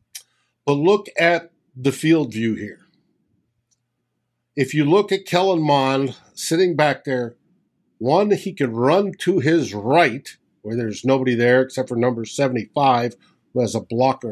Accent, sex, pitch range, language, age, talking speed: American, male, 120-165 Hz, English, 50-69, 145 wpm